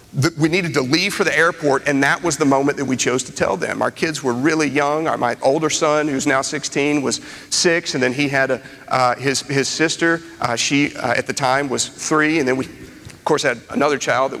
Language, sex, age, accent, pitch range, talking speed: English, male, 40-59, American, 140-170 Hz, 245 wpm